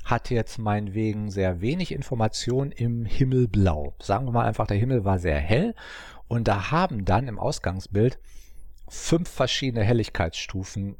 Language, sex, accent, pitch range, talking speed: German, male, German, 95-130 Hz, 145 wpm